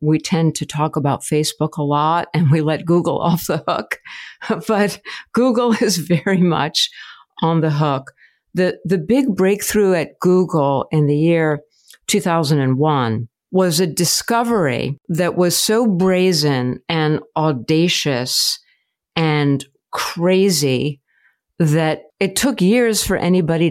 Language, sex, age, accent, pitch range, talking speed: English, female, 50-69, American, 150-190 Hz, 125 wpm